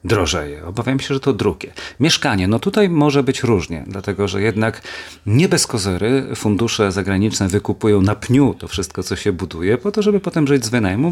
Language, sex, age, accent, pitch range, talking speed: Polish, male, 40-59, native, 95-120 Hz, 190 wpm